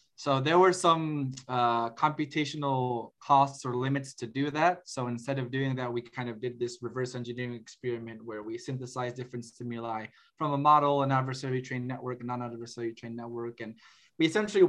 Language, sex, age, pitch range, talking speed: English, male, 20-39, 120-140 Hz, 170 wpm